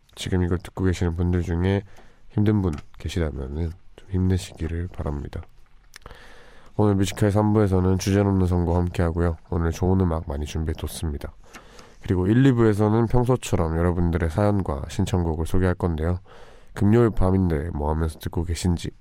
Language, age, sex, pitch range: Korean, 20-39, male, 85-100 Hz